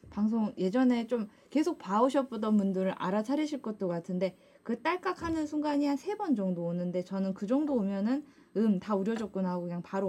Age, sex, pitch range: 20-39, female, 185-260 Hz